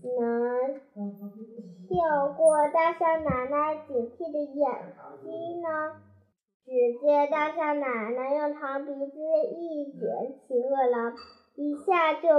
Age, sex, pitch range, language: 10-29, male, 250-310 Hz, Chinese